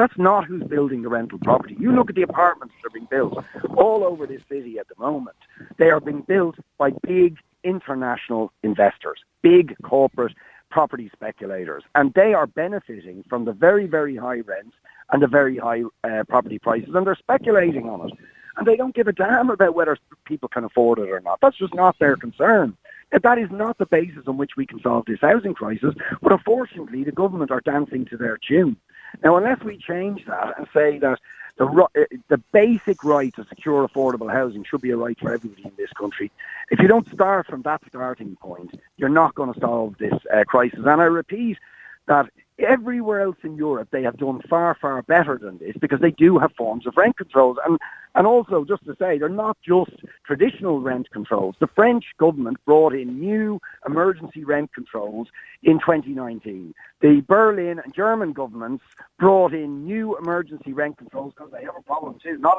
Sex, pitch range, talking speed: male, 130-195 Hz, 195 wpm